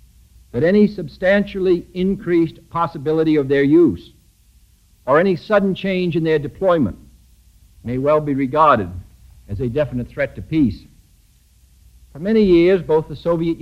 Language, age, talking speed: English, 60-79, 135 wpm